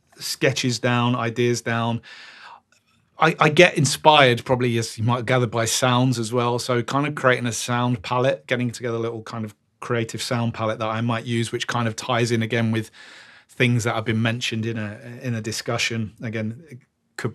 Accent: British